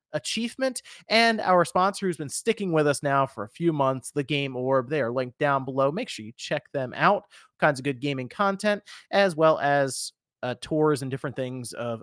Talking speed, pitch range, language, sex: 210 wpm, 130-175 Hz, English, male